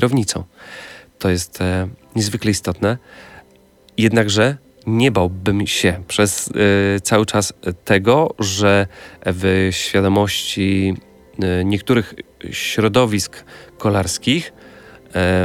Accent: native